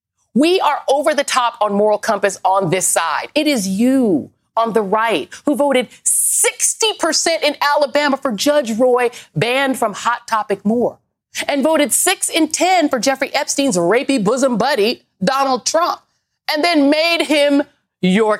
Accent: American